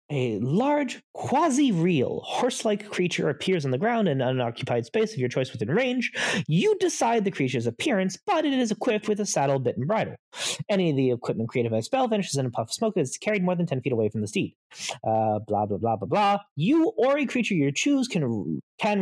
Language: English